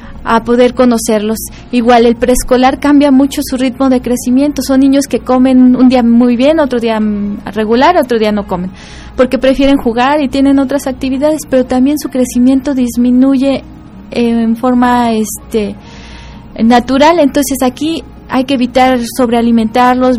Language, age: Spanish, 20-39